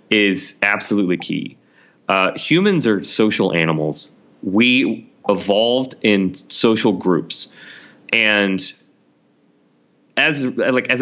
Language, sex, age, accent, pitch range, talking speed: English, male, 30-49, American, 90-130 Hz, 85 wpm